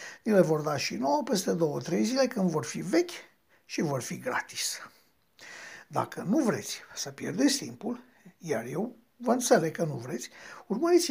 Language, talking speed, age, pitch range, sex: Romanian, 165 wpm, 60-79, 160-225 Hz, male